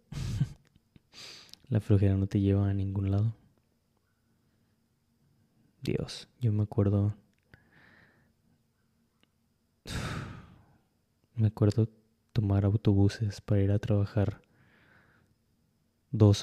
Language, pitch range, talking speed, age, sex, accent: Spanish, 100-115 Hz, 75 wpm, 20-39, male, Mexican